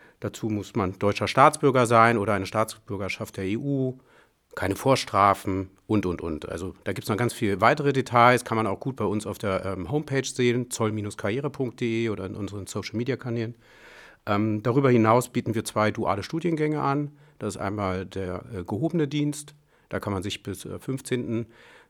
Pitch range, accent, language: 105-125 Hz, German, German